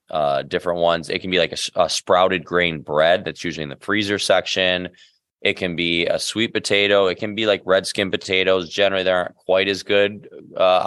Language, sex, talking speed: English, male, 210 wpm